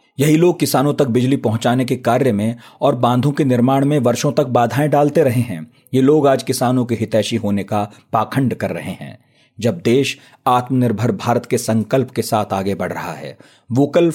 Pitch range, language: 110-140 Hz, Hindi